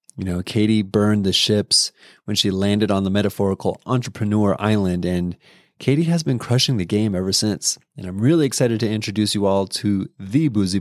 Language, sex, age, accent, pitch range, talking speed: English, male, 30-49, American, 100-130 Hz, 190 wpm